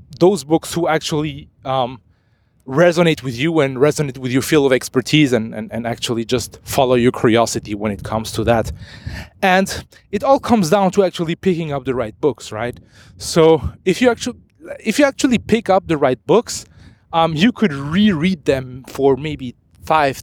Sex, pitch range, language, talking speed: male, 115-165 Hz, English, 180 wpm